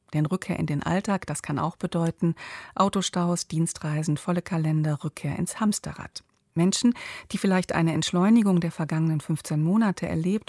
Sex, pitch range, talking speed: female, 150-185 Hz, 150 wpm